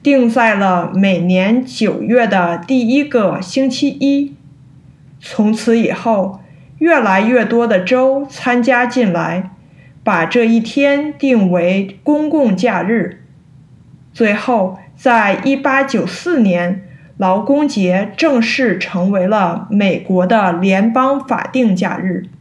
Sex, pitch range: female, 185-255 Hz